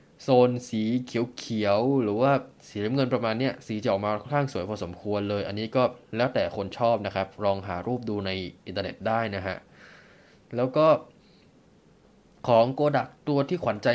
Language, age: Thai, 20-39